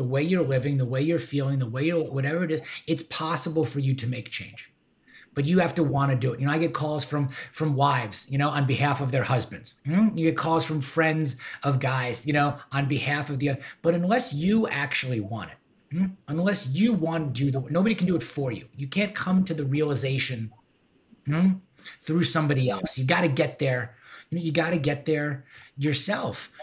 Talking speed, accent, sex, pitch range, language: 225 wpm, American, male, 130-165 Hz, English